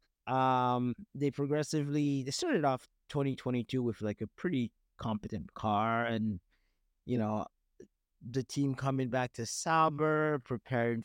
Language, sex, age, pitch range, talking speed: English, male, 30-49, 110-140 Hz, 135 wpm